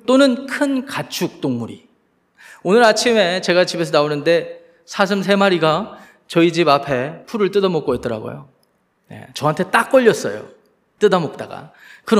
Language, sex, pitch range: Korean, male, 155-215 Hz